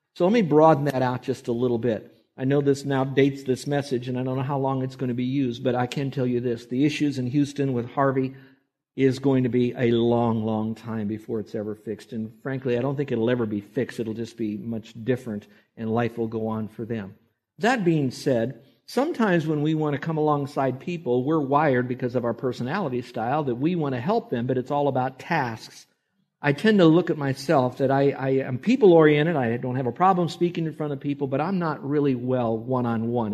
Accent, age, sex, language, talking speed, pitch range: American, 50-69, male, English, 230 wpm, 120-150 Hz